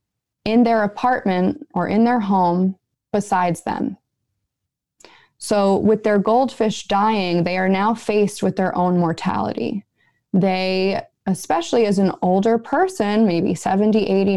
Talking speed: 130 wpm